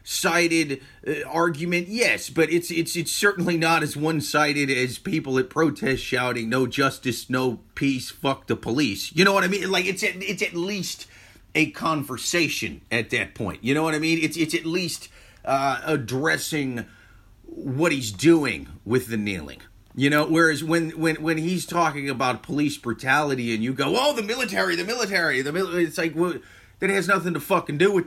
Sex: male